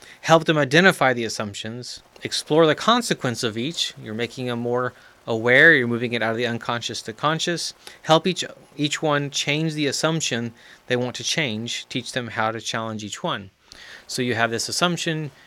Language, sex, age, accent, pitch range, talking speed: English, male, 30-49, American, 105-130 Hz, 180 wpm